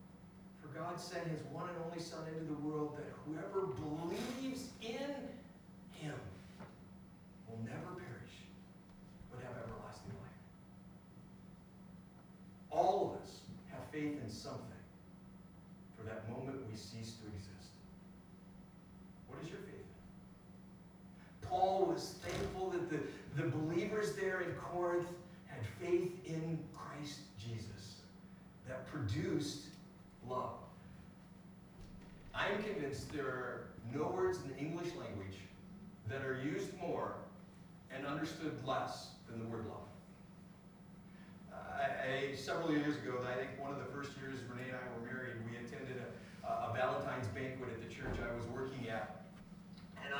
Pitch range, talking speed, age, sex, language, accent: 130-185 Hz, 135 wpm, 50-69, male, English, American